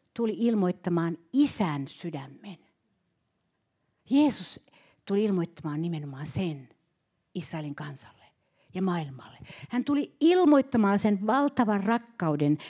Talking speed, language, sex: 90 wpm, Finnish, female